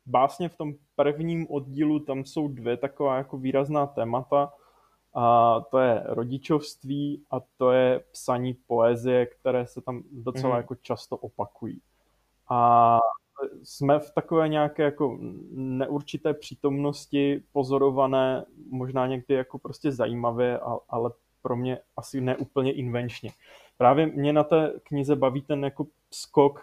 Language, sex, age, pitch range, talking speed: Czech, male, 20-39, 130-150 Hz, 115 wpm